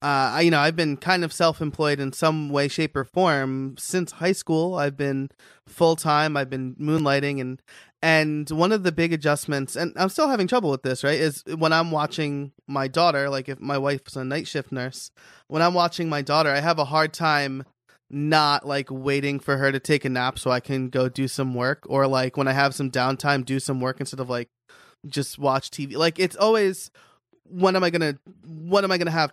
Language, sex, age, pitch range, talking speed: English, male, 20-39, 135-165 Hz, 210 wpm